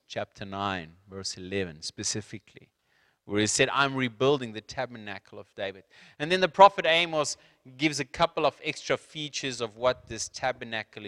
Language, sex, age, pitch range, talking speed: English, male, 30-49, 105-140 Hz, 155 wpm